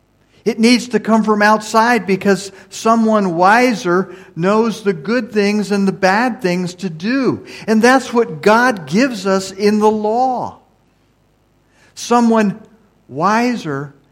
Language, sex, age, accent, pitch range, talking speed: English, male, 50-69, American, 160-220 Hz, 130 wpm